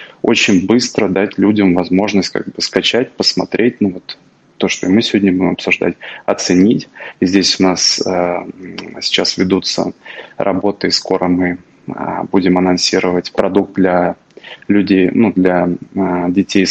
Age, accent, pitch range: 20-39, native, 90-100 Hz